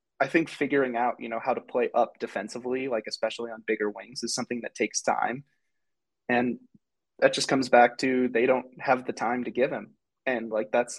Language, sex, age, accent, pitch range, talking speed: English, male, 20-39, American, 115-135 Hz, 205 wpm